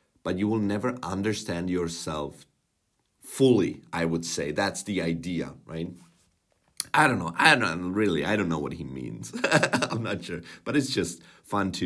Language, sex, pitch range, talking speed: Czech, male, 85-115 Hz, 170 wpm